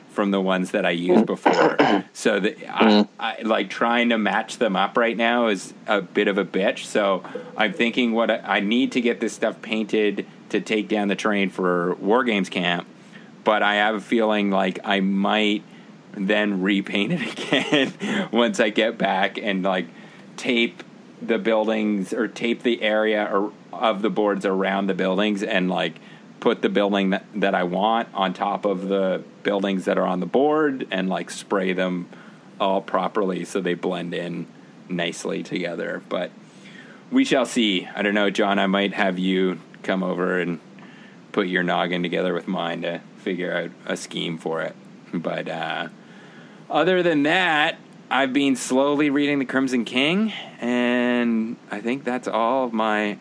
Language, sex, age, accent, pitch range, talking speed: English, male, 30-49, American, 95-115 Hz, 175 wpm